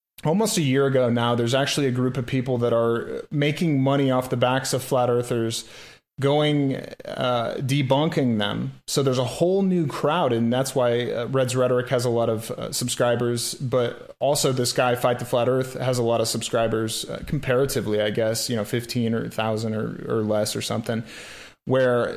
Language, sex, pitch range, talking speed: English, male, 120-140 Hz, 190 wpm